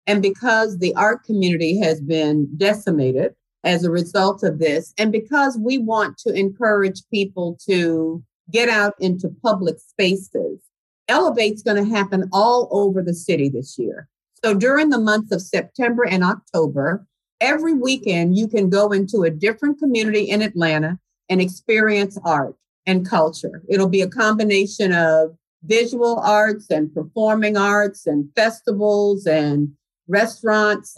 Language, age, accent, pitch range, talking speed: English, 50-69, American, 175-220 Hz, 145 wpm